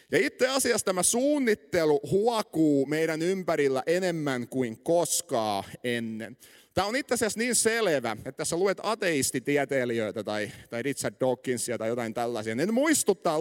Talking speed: 145 wpm